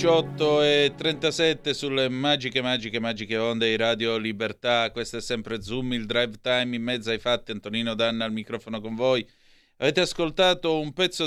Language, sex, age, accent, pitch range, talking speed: Italian, male, 30-49, native, 115-140 Hz, 170 wpm